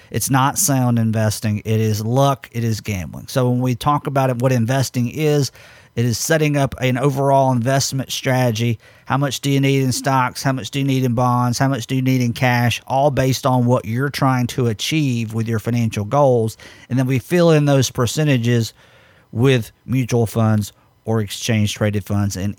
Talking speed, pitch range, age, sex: 195 wpm, 115-145 Hz, 50-69, male